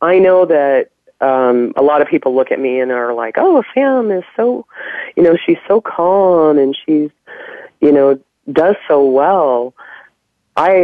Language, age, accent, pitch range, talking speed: English, 30-49, American, 130-180 Hz, 170 wpm